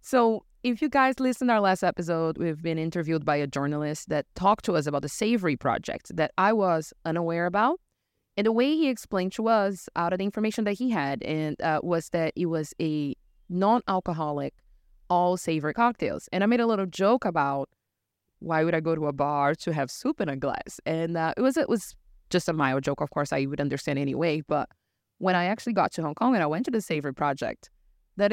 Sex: female